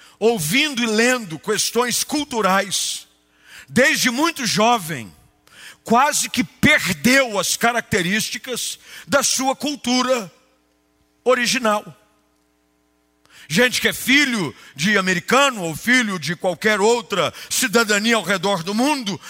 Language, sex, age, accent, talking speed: Portuguese, male, 50-69, Brazilian, 105 wpm